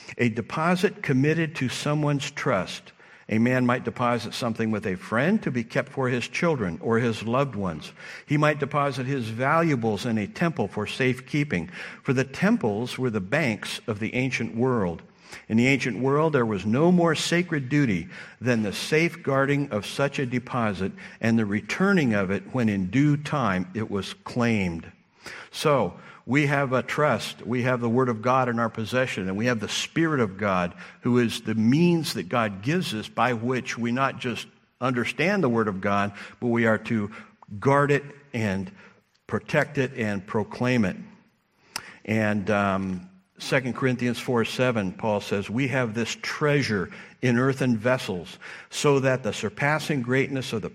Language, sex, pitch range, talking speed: English, male, 110-140 Hz, 175 wpm